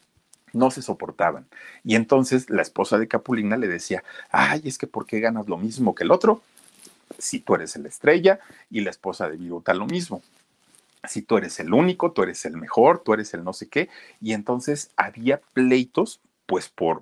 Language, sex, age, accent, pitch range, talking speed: Spanish, male, 40-59, Mexican, 105-145 Hz, 195 wpm